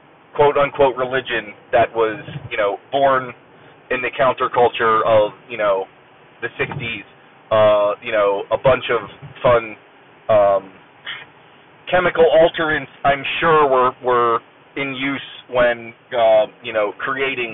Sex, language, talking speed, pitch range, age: male, English, 125 wpm, 110-135 Hz, 30-49